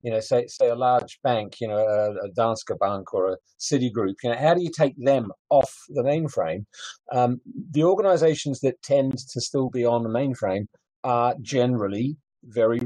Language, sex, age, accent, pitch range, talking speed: English, male, 40-59, British, 115-145 Hz, 185 wpm